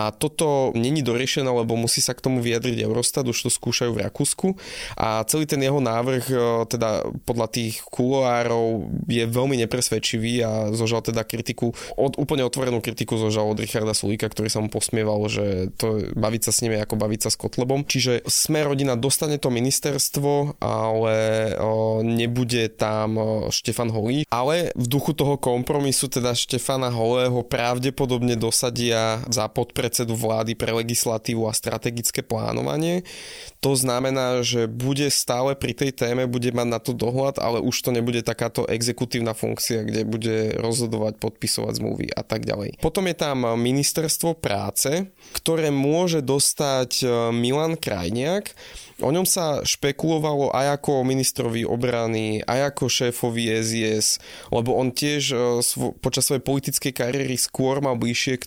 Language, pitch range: Slovak, 115-140 Hz